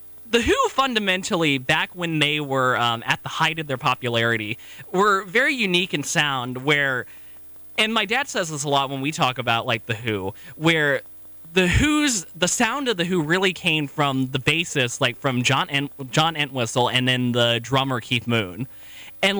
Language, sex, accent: English, male, American